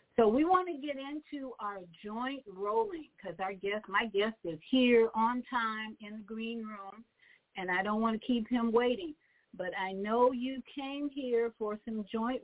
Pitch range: 200-250 Hz